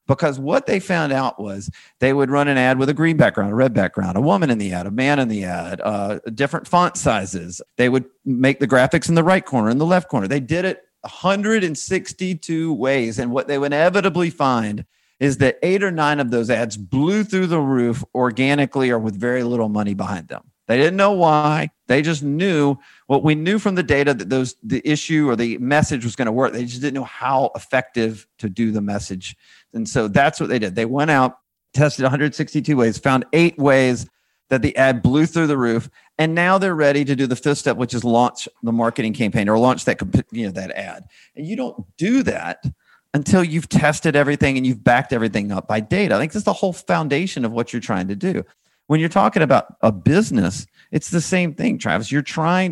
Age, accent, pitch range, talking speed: 40-59, American, 120-160 Hz, 220 wpm